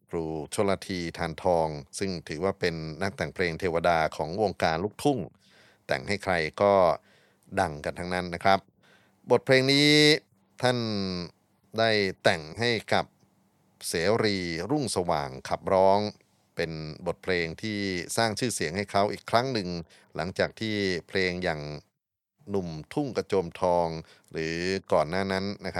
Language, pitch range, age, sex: Thai, 85-105 Hz, 30-49, male